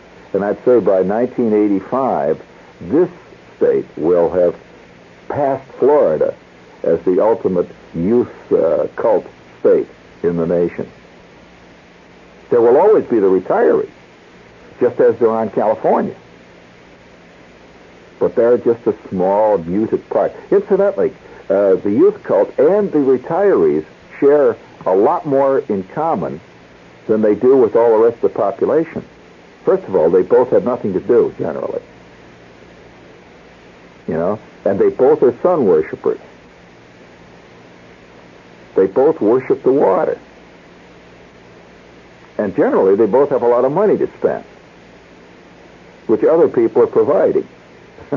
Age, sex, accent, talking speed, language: 60-79, male, American, 125 wpm, English